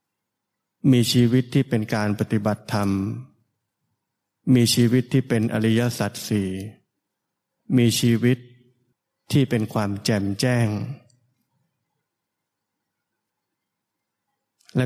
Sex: male